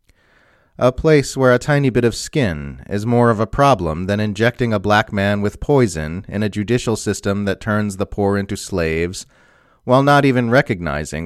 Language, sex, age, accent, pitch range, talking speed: English, male, 30-49, American, 90-125 Hz, 180 wpm